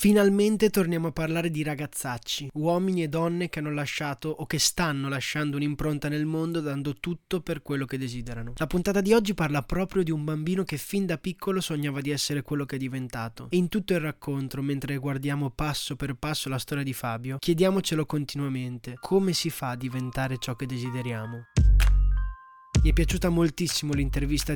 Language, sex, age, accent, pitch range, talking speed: Italian, male, 20-39, native, 135-165 Hz, 180 wpm